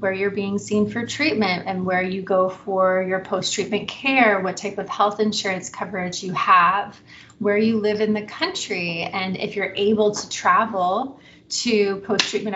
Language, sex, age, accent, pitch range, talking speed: English, female, 30-49, American, 185-215 Hz, 170 wpm